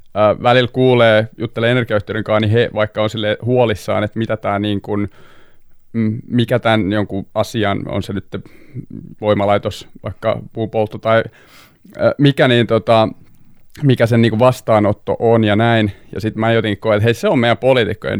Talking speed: 155 wpm